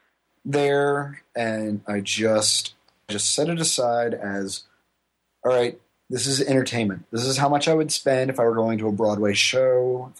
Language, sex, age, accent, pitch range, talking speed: English, male, 30-49, American, 100-125 Hz, 175 wpm